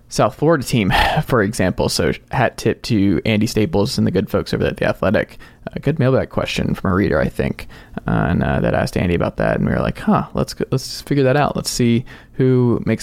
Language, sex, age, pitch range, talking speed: English, male, 20-39, 110-140 Hz, 240 wpm